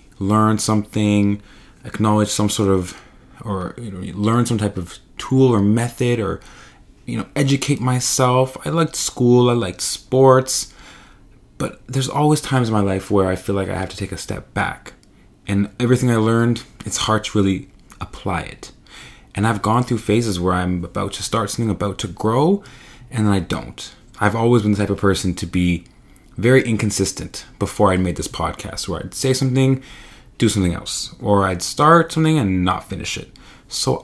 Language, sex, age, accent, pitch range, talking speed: English, male, 20-39, American, 95-125 Hz, 185 wpm